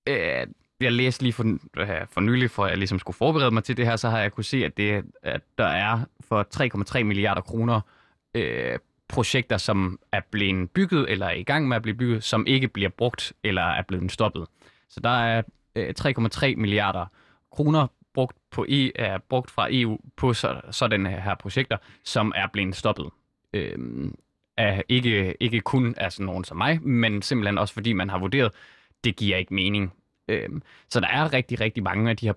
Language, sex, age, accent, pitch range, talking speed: Danish, male, 20-39, native, 100-125 Hz, 195 wpm